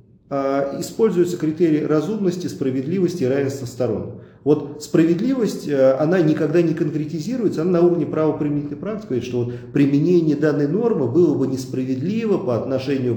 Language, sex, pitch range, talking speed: English, male, 125-155 Hz, 130 wpm